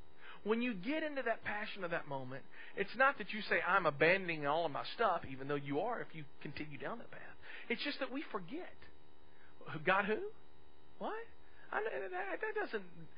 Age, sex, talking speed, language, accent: 40-59, male, 175 wpm, English, American